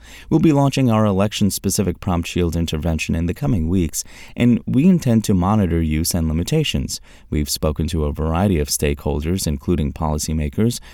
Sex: male